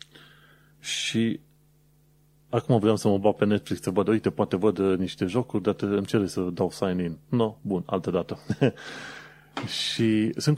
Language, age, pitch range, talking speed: Romanian, 30-49, 95-130 Hz, 165 wpm